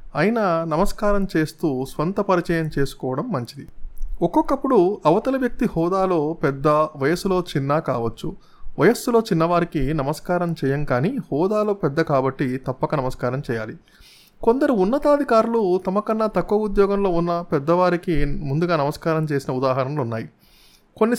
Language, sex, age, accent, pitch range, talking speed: Telugu, male, 20-39, native, 135-185 Hz, 110 wpm